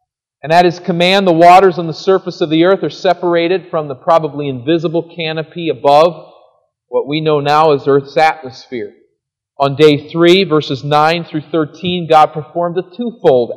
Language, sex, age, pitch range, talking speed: English, male, 40-59, 140-195 Hz, 170 wpm